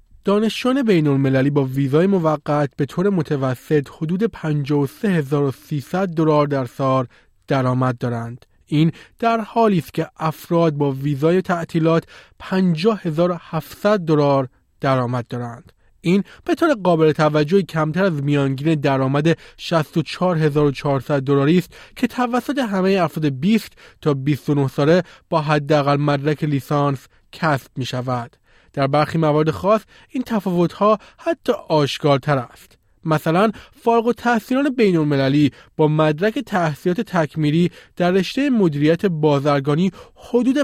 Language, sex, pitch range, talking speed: Persian, male, 145-195 Hz, 115 wpm